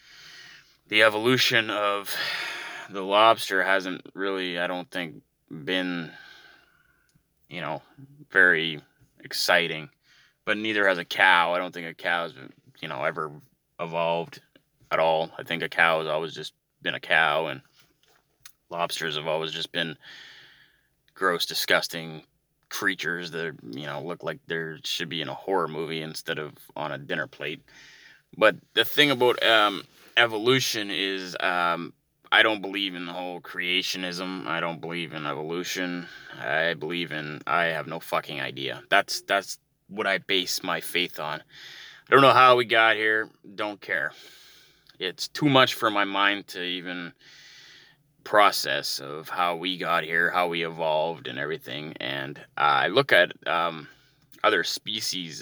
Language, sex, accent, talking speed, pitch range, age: English, male, American, 150 wpm, 85-110 Hz, 20-39